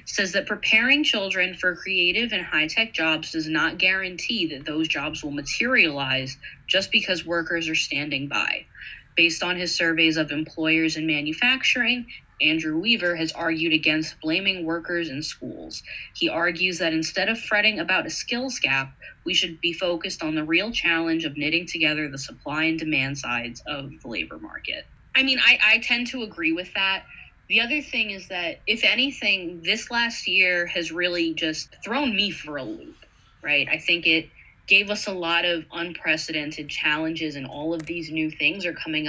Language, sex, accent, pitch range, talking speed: English, female, American, 155-185 Hz, 180 wpm